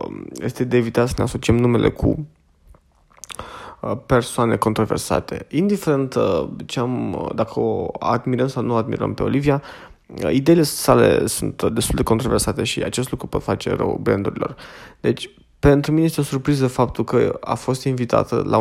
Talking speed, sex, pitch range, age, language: 140 wpm, male, 120-150 Hz, 20-39, Romanian